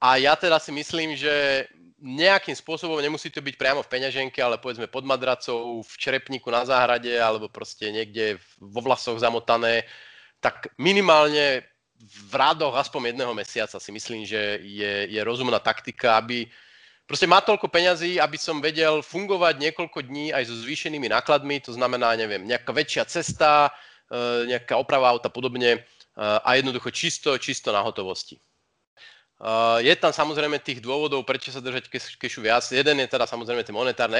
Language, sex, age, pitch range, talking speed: Slovak, male, 30-49, 120-160 Hz, 160 wpm